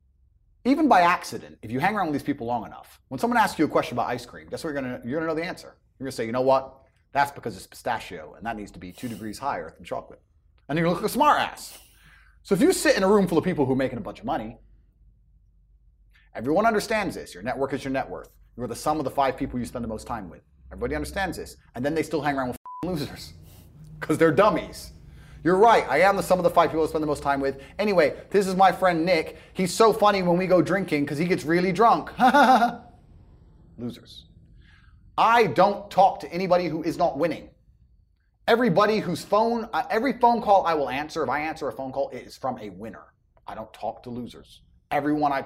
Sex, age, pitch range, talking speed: male, 30-49, 125-200 Hz, 245 wpm